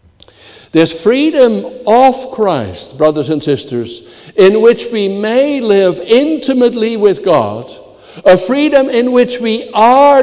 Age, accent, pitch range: 60-79, American, 185-250 Hz